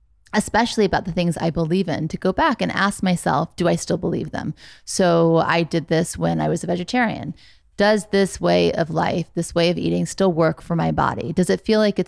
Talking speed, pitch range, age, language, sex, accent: 230 wpm, 165-200 Hz, 20-39, English, female, American